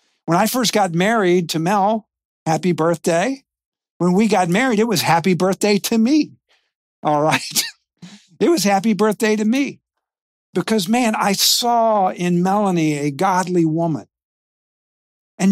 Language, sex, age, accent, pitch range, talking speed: English, male, 50-69, American, 165-235 Hz, 145 wpm